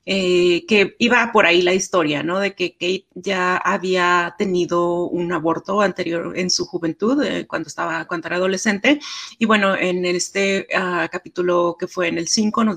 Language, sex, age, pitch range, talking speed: Spanish, female, 30-49, 175-210 Hz, 180 wpm